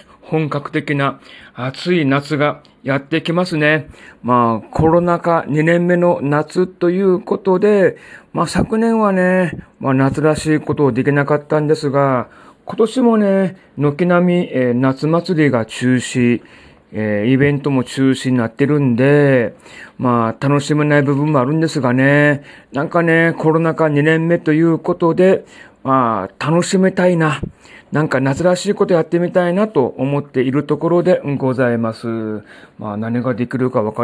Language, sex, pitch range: Japanese, male, 125-160 Hz